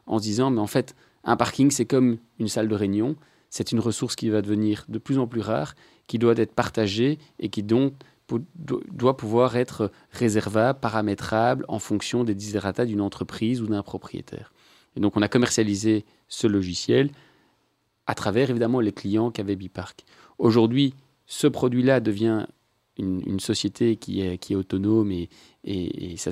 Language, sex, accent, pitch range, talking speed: French, male, French, 100-120 Hz, 180 wpm